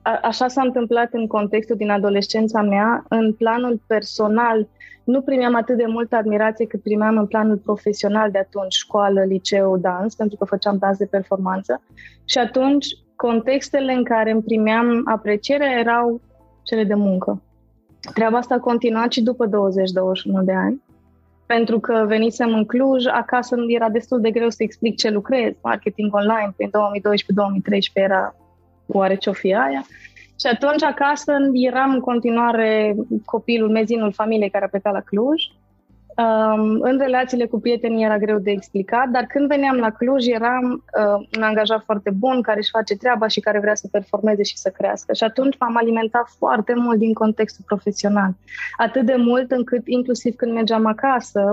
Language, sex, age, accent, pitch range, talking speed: Romanian, female, 20-39, native, 205-245 Hz, 160 wpm